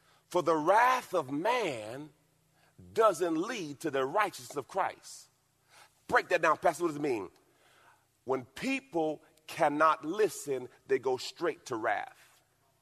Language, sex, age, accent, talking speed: English, male, 40-59, American, 135 wpm